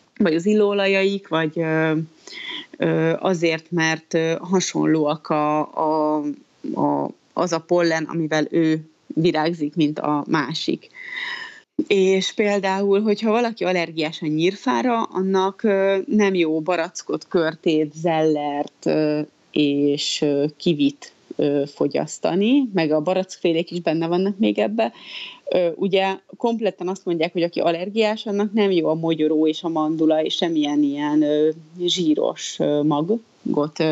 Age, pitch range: 30-49, 155-195 Hz